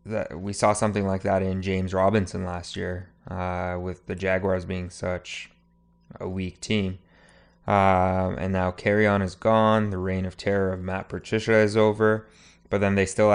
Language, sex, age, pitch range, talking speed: English, male, 20-39, 95-105 Hz, 180 wpm